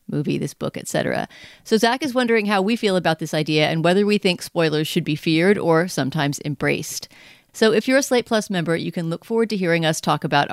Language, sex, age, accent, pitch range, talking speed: English, female, 40-59, American, 160-205 Hz, 235 wpm